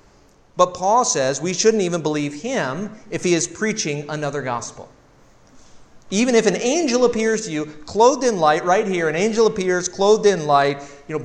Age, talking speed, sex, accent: 40-59, 180 wpm, male, American